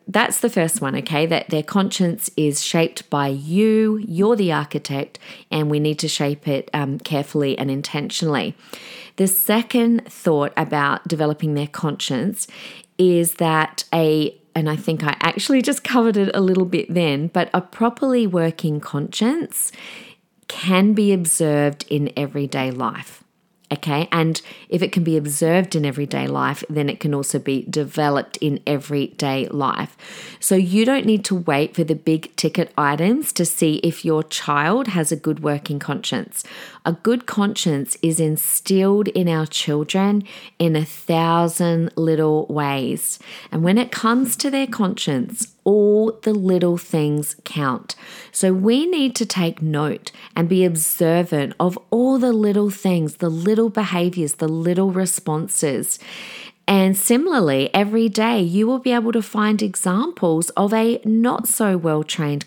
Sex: female